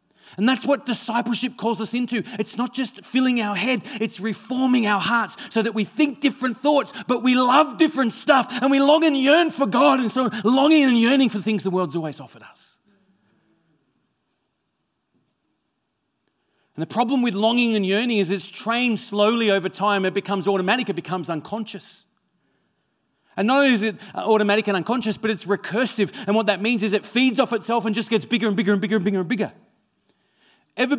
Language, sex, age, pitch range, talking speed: English, male, 30-49, 160-230 Hz, 190 wpm